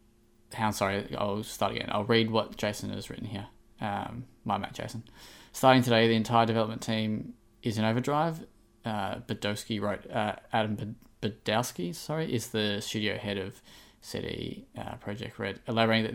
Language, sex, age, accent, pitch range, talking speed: English, male, 20-39, Australian, 105-120 Hz, 160 wpm